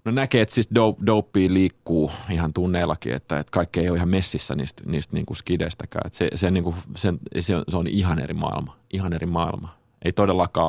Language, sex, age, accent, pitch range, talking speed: Finnish, male, 30-49, native, 85-100 Hz, 150 wpm